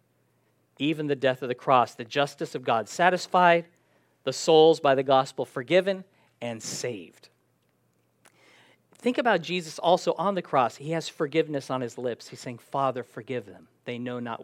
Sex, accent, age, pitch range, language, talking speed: male, American, 40-59, 140-190 Hz, English, 165 wpm